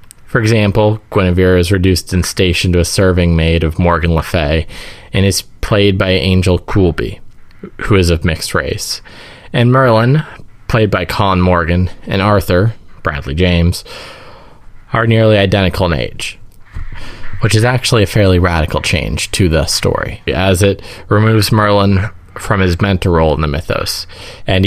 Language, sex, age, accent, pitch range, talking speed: English, male, 20-39, American, 85-105 Hz, 155 wpm